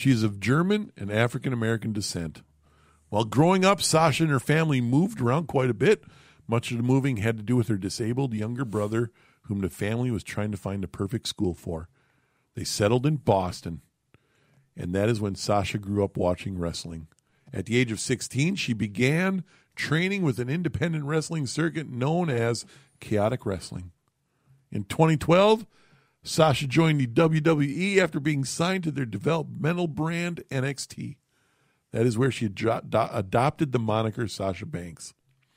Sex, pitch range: male, 115-160 Hz